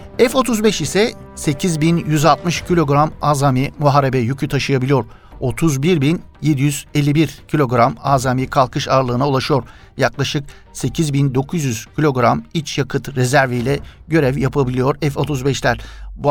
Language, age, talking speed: Turkish, 50-69, 90 wpm